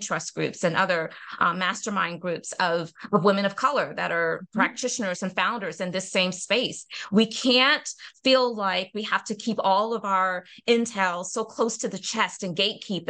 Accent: American